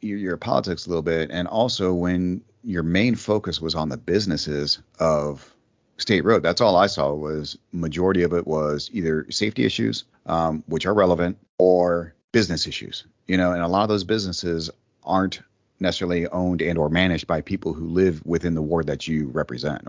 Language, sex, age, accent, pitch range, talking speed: English, male, 30-49, American, 75-95 Hz, 185 wpm